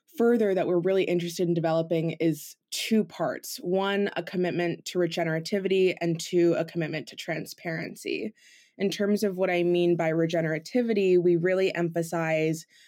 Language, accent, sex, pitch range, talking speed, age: English, American, female, 165-195 Hz, 150 wpm, 20-39